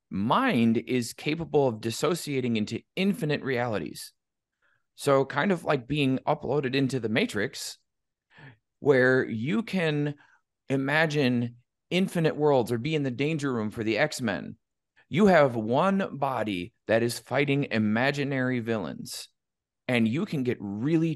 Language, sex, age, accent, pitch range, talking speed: English, male, 30-49, American, 115-145 Hz, 130 wpm